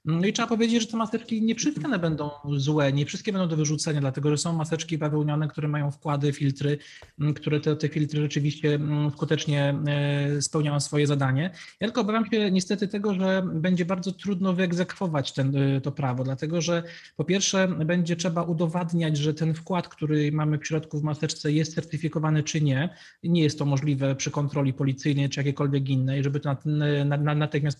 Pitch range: 150-175 Hz